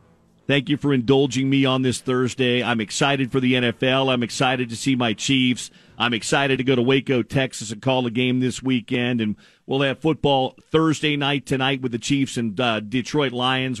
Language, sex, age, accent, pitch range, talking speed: English, male, 50-69, American, 125-160 Hz, 200 wpm